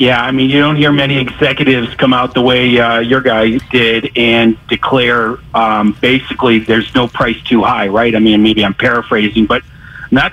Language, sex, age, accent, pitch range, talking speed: English, male, 40-59, American, 125-150 Hz, 190 wpm